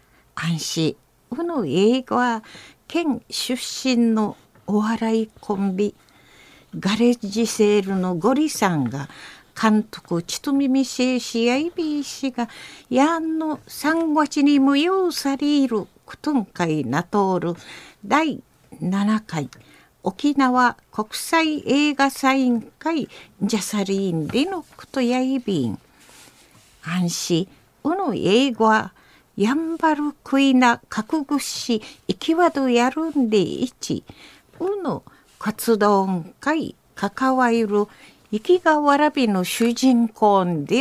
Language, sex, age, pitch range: Japanese, female, 50-69, 200-275 Hz